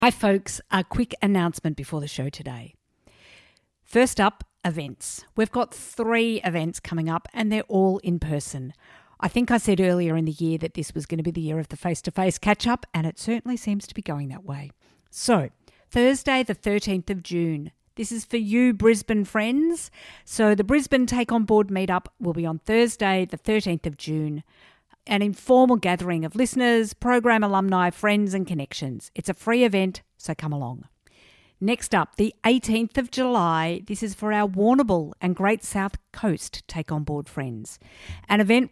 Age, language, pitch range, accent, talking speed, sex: 50-69, English, 165-225 Hz, Australian, 180 wpm, female